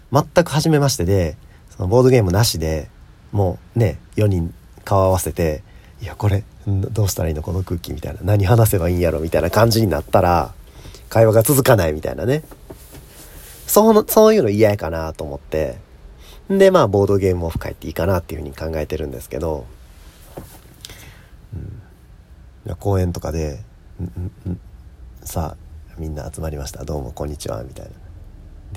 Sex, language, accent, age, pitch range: male, Japanese, native, 40-59, 80-110 Hz